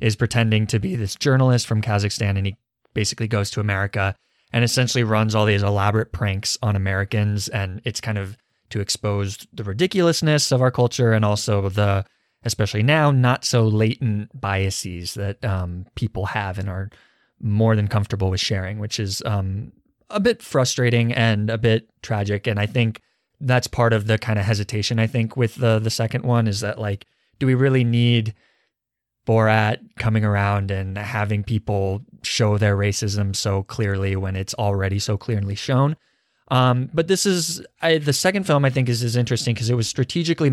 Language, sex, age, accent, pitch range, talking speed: English, male, 20-39, American, 100-120 Hz, 180 wpm